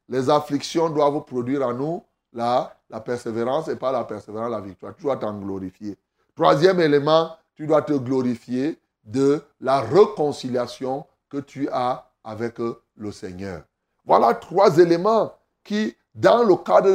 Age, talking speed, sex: 30-49, 145 wpm, male